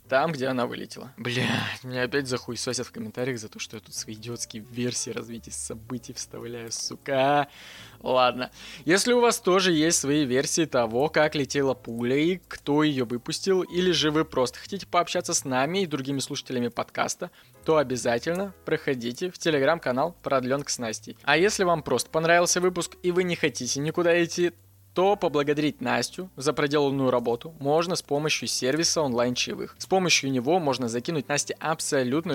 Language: Russian